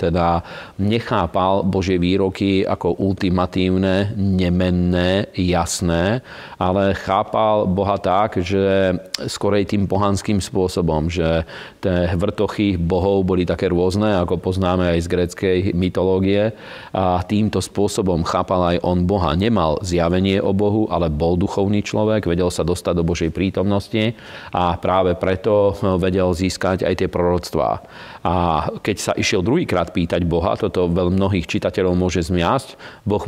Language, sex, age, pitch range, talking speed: Slovak, male, 40-59, 90-100 Hz, 130 wpm